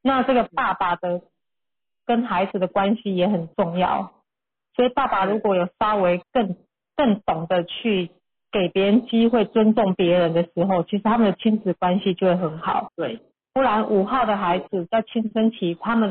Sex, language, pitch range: female, Chinese, 185-230 Hz